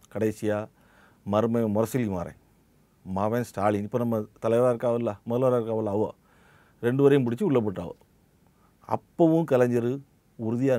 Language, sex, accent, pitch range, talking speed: Tamil, male, native, 105-130 Hz, 115 wpm